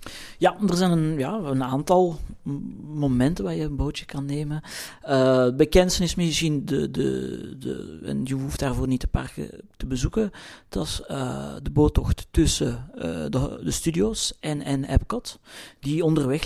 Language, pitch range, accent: Dutch, 135-180 Hz, Belgian